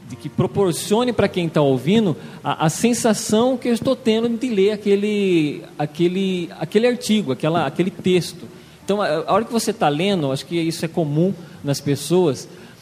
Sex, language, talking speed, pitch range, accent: male, Portuguese, 175 wpm, 150-195 Hz, Brazilian